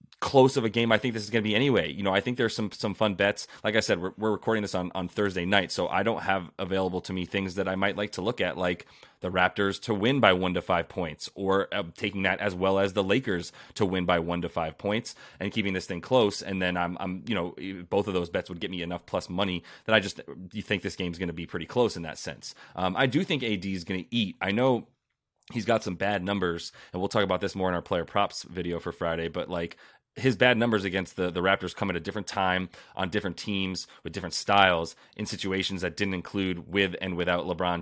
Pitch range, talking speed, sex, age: 90-110 Hz, 265 wpm, male, 30-49